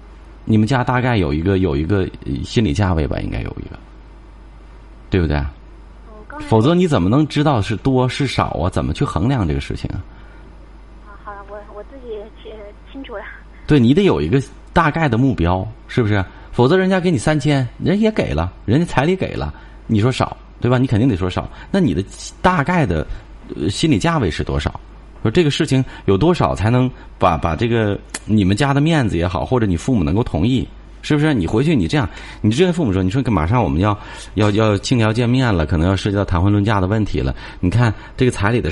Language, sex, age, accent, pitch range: Chinese, male, 30-49, native, 90-135 Hz